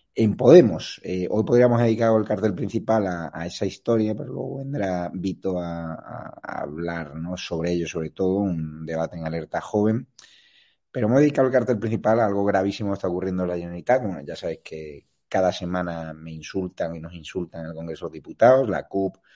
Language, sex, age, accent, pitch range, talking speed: Spanish, male, 30-49, Spanish, 85-110 Hz, 200 wpm